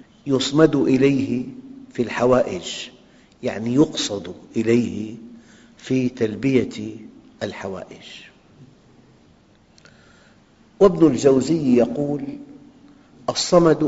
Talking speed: 60 wpm